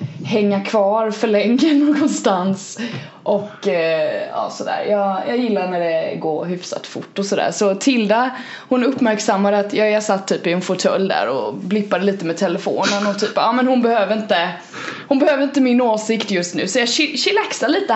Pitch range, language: 190-250 Hz, Swedish